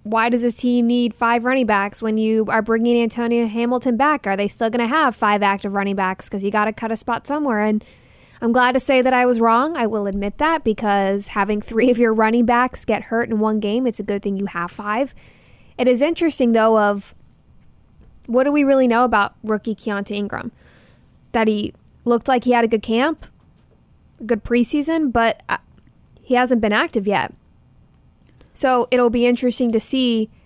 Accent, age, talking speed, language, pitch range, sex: American, 10-29, 200 wpm, English, 205-245 Hz, female